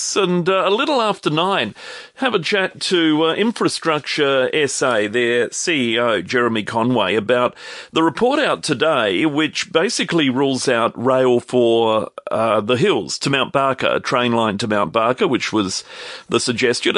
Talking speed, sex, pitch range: 155 wpm, male, 110-135 Hz